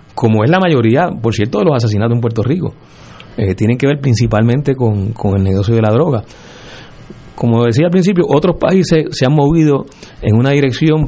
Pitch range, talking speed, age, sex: 110-150 Hz, 195 wpm, 30-49, male